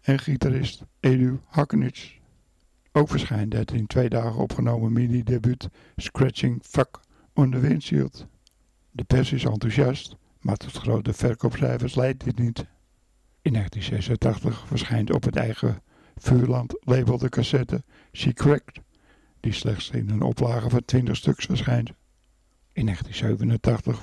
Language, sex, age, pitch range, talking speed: Dutch, male, 60-79, 115-130 Hz, 125 wpm